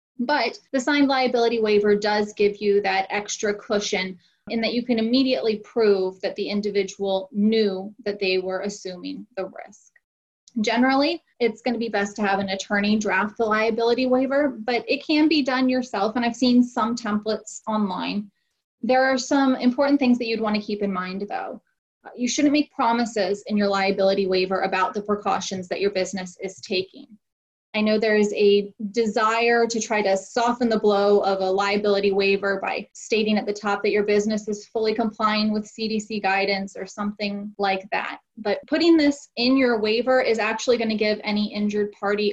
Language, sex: English, female